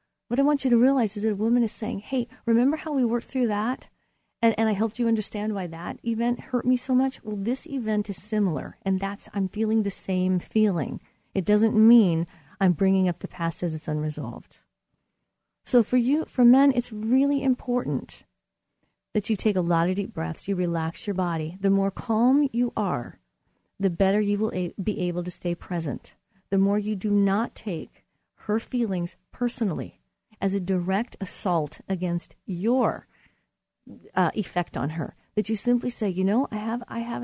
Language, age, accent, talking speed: English, 40-59, American, 190 wpm